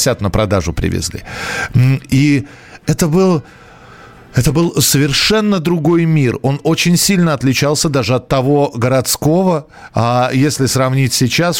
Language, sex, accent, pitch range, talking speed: Russian, male, native, 120-155 Hz, 120 wpm